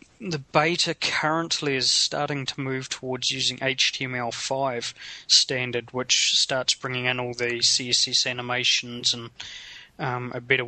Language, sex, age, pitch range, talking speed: English, male, 20-39, 125-135 Hz, 130 wpm